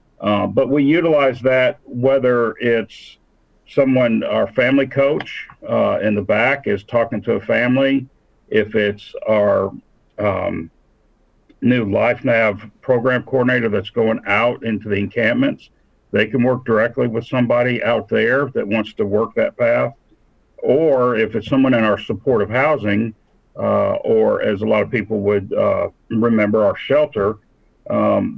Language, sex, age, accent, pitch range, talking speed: English, male, 50-69, American, 105-130 Hz, 145 wpm